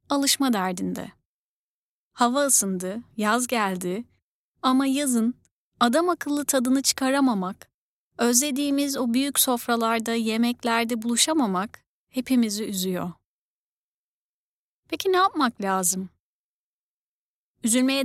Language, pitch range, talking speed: Turkish, 230-300 Hz, 85 wpm